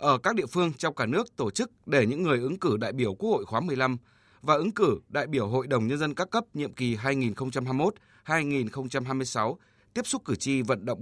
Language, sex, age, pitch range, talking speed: Vietnamese, male, 20-39, 120-155 Hz, 220 wpm